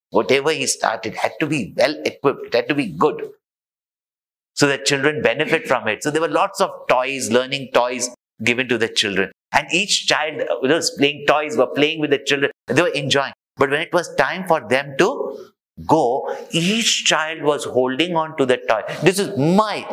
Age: 50-69